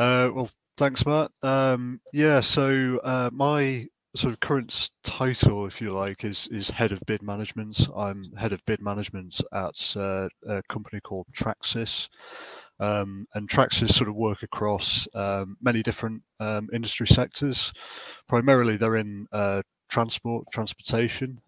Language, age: English, 30-49